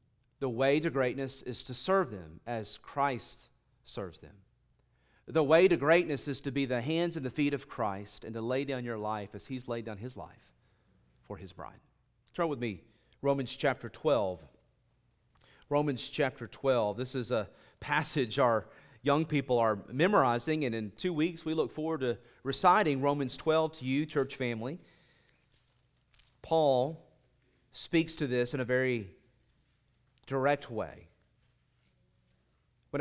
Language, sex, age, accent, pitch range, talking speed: English, male, 40-59, American, 120-145 Hz, 155 wpm